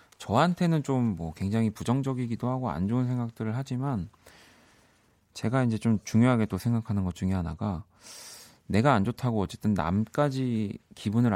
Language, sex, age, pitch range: Korean, male, 40-59, 95-130 Hz